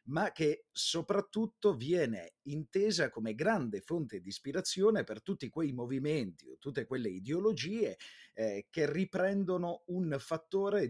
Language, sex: Italian, male